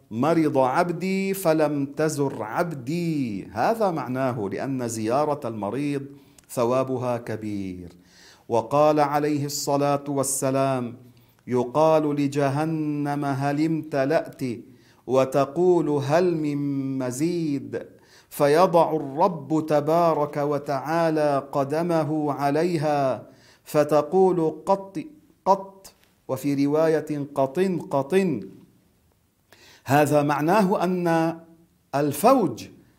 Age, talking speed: 40-59, 75 wpm